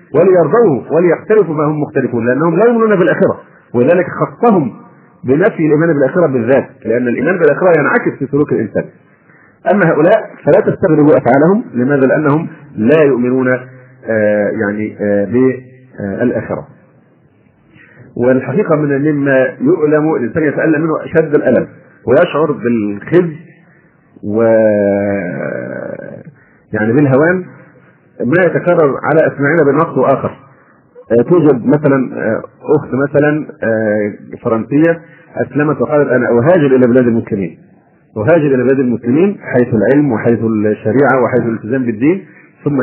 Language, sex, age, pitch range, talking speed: Arabic, male, 40-59, 120-155 Hz, 110 wpm